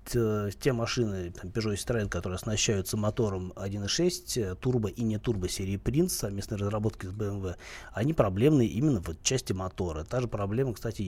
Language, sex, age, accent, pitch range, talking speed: Russian, male, 30-49, native, 100-125 Hz, 160 wpm